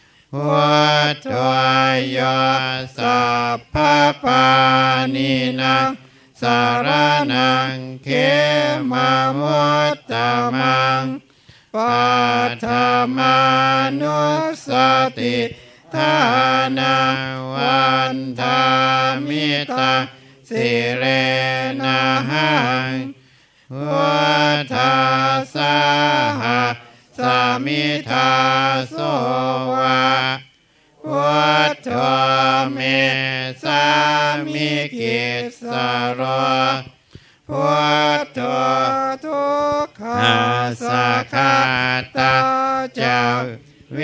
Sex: male